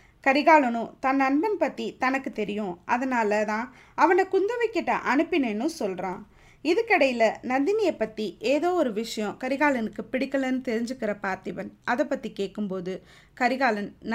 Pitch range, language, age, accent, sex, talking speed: 210-290 Hz, Tamil, 20-39, native, female, 105 wpm